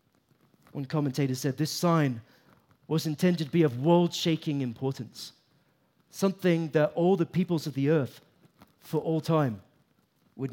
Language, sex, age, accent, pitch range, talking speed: English, male, 30-49, British, 130-165 Hz, 135 wpm